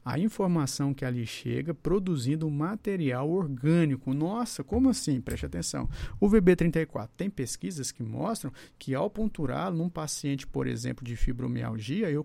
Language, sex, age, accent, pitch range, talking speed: Portuguese, male, 50-69, Brazilian, 130-185 Hz, 145 wpm